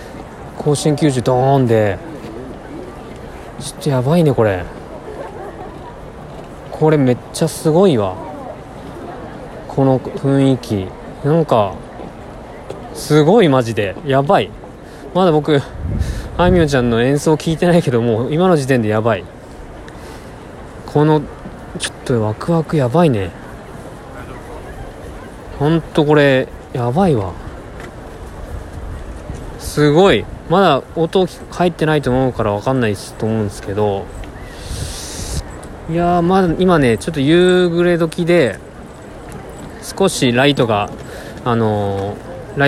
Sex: male